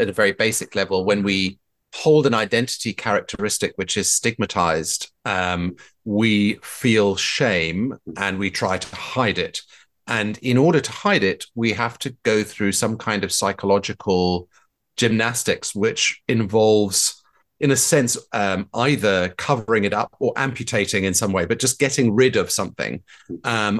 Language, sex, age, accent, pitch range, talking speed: English, male, 30-49, British, 95-115 Hz, 155 wpm